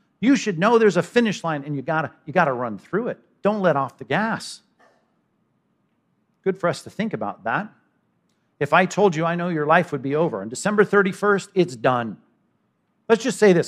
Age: 50-69